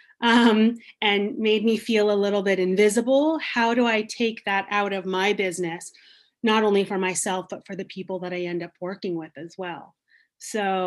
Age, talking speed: 30-49, 195 wpm